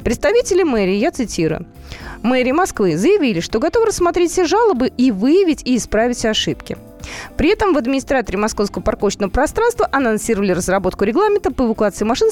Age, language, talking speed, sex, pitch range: 20-39, Russian, 145 wpm, female, 205-295 Hz